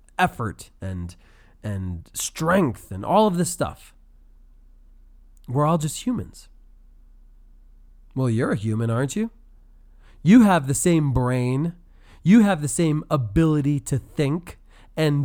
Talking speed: 125 wpm